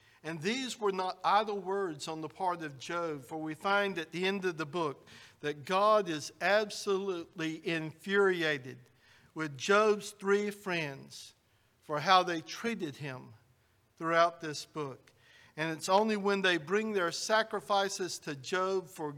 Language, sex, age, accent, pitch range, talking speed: English, male, 60-79, American, 135-200 Hz, 150 wpm